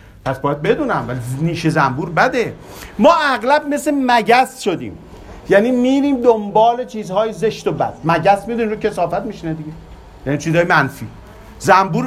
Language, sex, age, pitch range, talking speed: Persian, male, 50-69, 135-210 Hz, 145 wpm